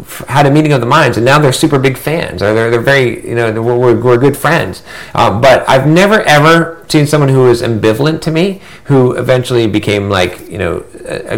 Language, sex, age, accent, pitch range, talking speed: English, male, 40-59, American, 105-145 Hz, 220 wpm